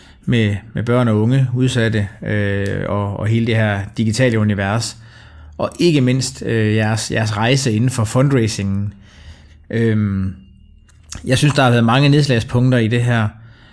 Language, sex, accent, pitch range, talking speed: Danish, male, native, 110-140 Hz, 155 wpm